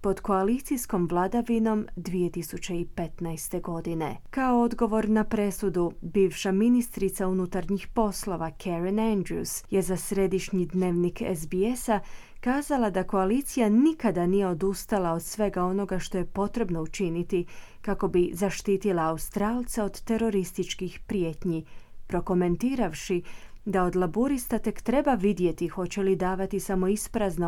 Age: 30-49